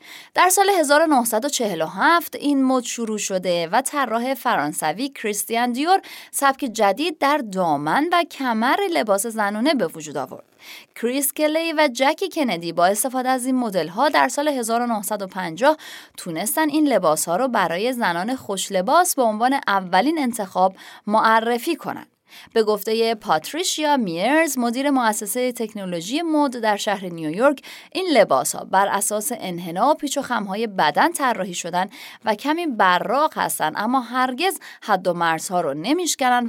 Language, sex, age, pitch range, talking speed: Persian, female, 30-49, 200-300 Hz, 140 wpm